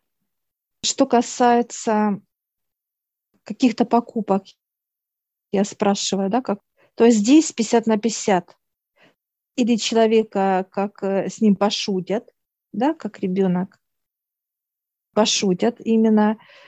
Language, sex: Russian, female